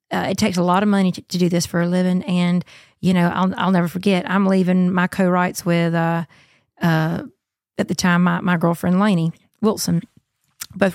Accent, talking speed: American, 205 wpm